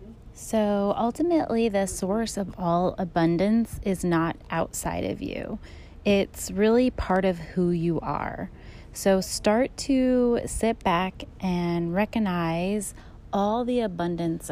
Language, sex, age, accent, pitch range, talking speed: English, female, 30-49, American, 170-210 Hz, 120 wpm